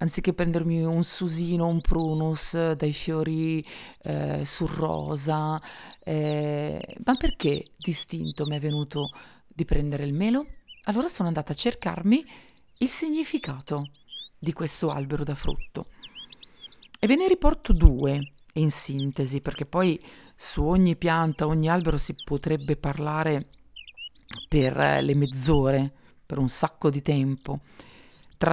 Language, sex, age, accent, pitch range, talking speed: Italian, female, 40-59, native, 145-175 Hz, 130 wpm